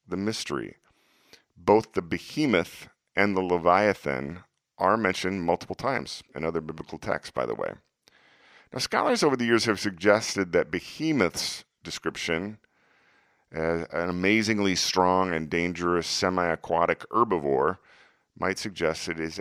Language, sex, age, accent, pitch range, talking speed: English, male, 40-59, American, 80-100 Hz, 125 wpm